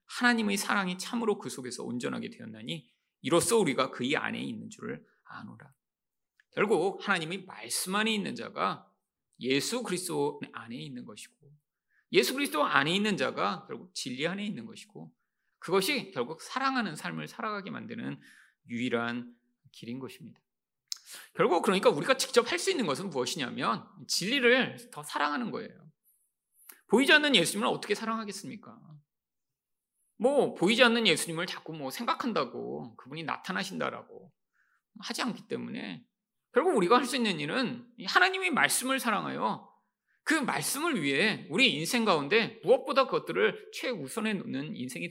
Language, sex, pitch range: Korean, male, 165-245 Hz